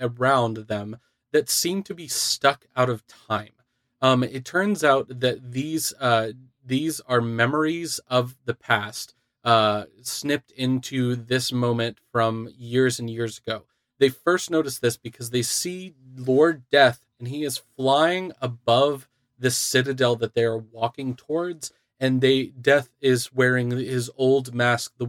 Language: English